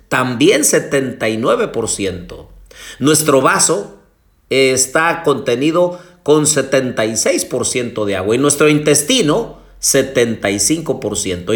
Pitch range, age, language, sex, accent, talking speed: 120-170 Hz, 50-69, Spanish, male, Mexican, 75 wpm